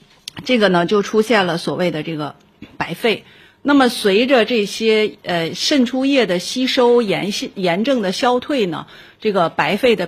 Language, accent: Chinese, native